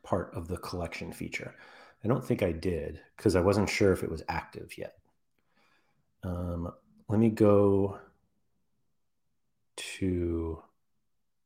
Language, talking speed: English, 125 wpm